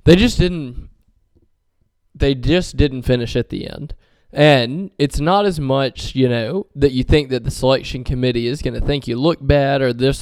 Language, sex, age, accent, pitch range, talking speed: English, male, 20-39, American, 125-180 Hz, 195 wpm